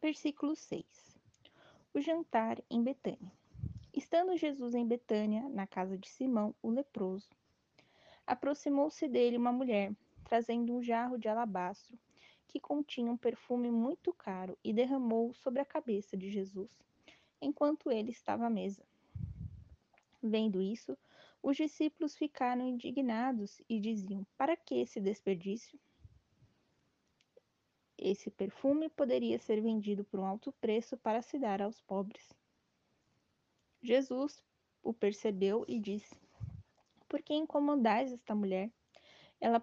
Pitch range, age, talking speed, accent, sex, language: 210-275 Hz, 20-39, 120 wpm, Brazilian, female, Portuguese